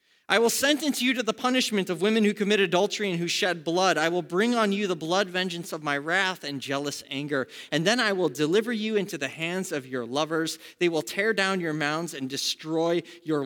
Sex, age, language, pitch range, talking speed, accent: male, 30-49, English, 140-190 Hz, 225 wpm, American